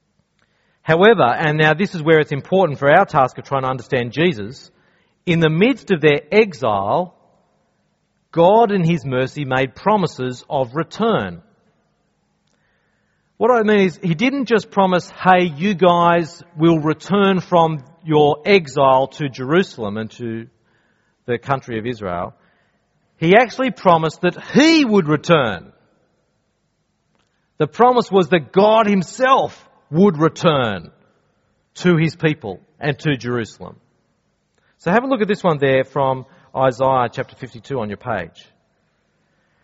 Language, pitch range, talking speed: English, 130-180 Hz, 135 wpm